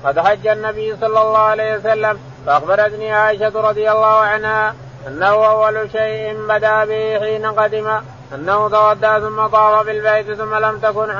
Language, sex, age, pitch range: Arabic, male, 20-39, 210-215 Hz